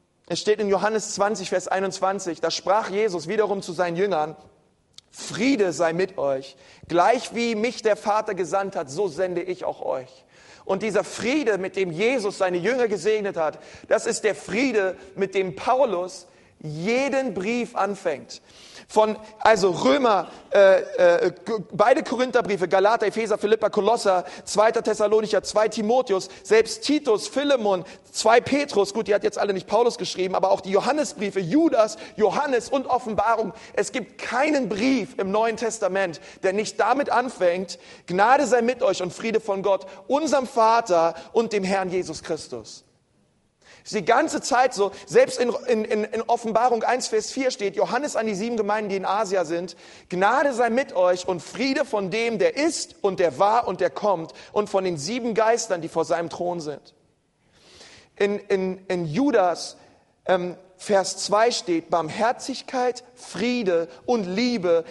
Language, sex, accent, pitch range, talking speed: German, male, German, 185-235 Hz, 160 wpm